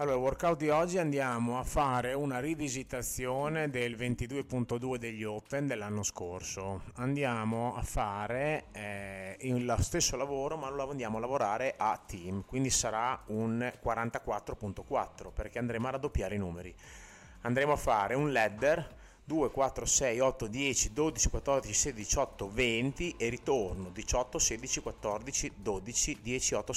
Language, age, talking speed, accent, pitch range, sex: Italian, 30-49, 140 wpm, native, 100-130 Hz, male